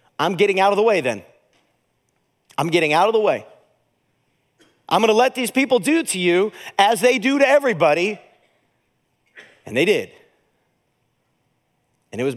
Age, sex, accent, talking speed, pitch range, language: 40-59, male, American, 155 wpm, 150-225 Hz, English